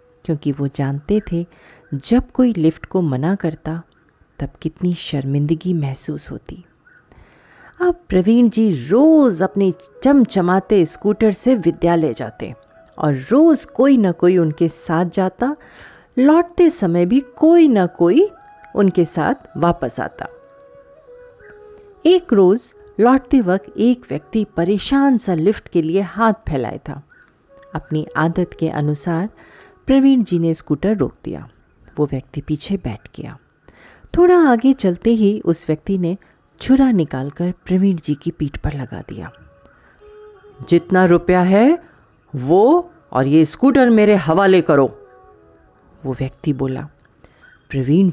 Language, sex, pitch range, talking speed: Hindi, female, 155-235 Hz, 130 wpm